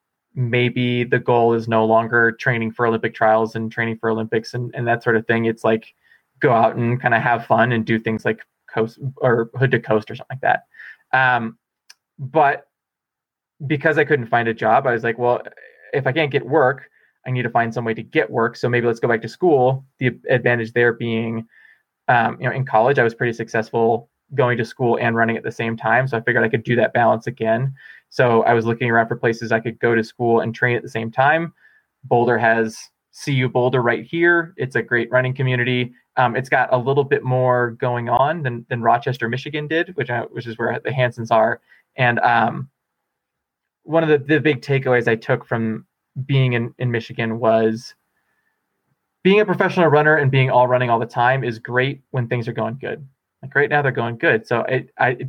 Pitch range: 115-130 Hz